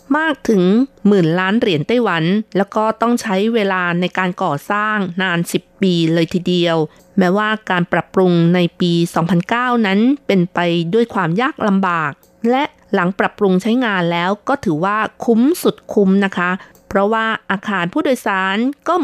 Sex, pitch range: female, 175-225 Hz